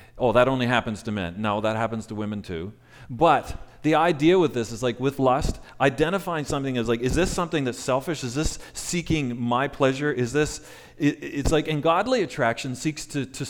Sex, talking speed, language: male, 200 wpm, English